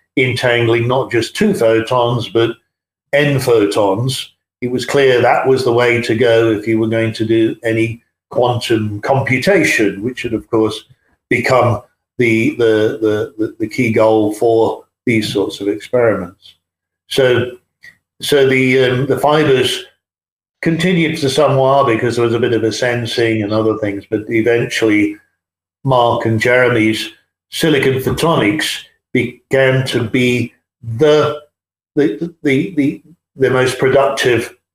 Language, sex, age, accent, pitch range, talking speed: English, male, 50-69, British, 110-140 Hz, 140 wpm